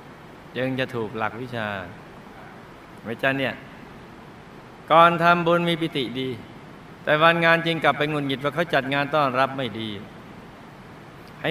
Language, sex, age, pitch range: Thai, male, 60-79, 135-165 Hz